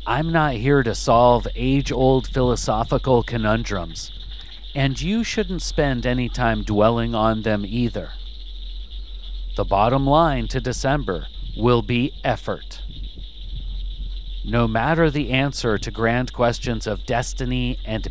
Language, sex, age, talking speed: English, male, 40-59, 120 wpm